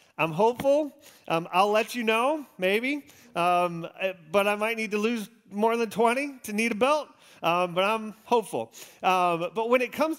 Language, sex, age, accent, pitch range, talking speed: English, male, 40-59, American, 200-260 Hz, 185 wpm